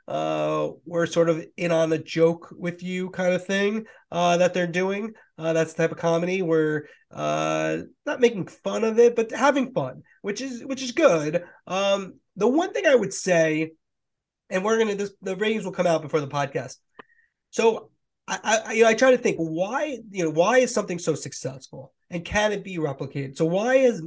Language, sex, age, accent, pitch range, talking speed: English, male, 30-49, American, 150-195 Hz, 195 wpm